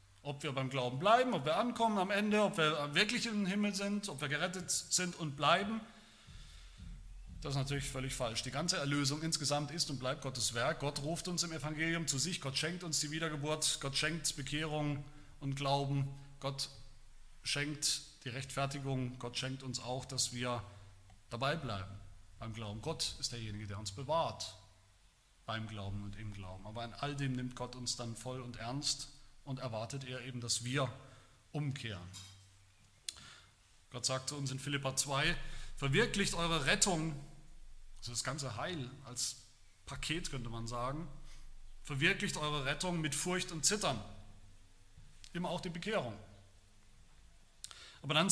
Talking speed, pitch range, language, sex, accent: 160 wpm, 110-160 Hz, German, male, German